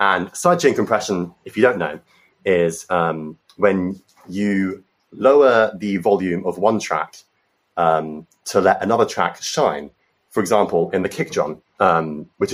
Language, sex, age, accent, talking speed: English, male, 30-49, British, 150 wpm